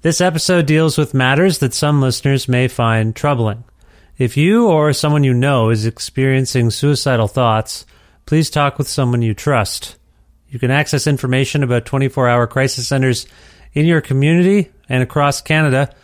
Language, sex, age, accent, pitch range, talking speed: English, male, 30-49, American, 120-150 Hz, 155 wpm